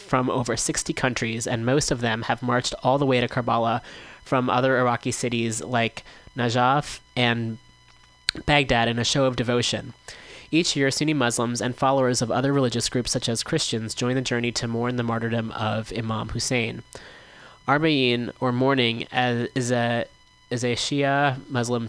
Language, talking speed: English, 165 wpm